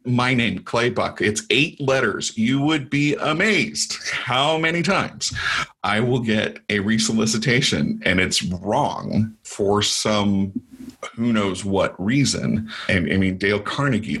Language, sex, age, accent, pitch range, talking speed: English, male, 40-59, American, 100-125 Hz, 140 wpm